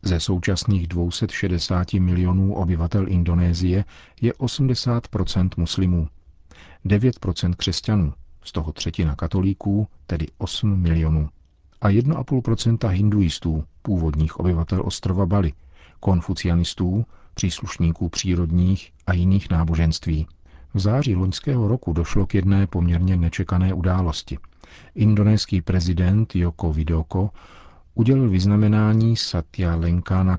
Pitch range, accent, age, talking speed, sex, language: 80-100 Hz, native, 40-59, 95 wpm, male, Czech